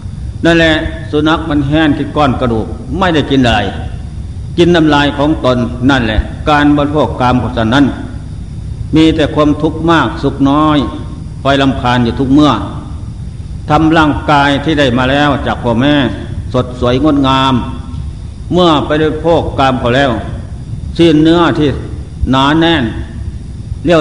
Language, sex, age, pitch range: Thai, male, 60-79, 110-150 Hz